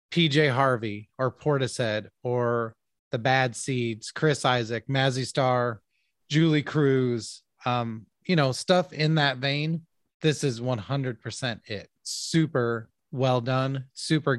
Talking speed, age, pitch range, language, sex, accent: 130 wpm, 30-49, 120-155 Hz, English, male, American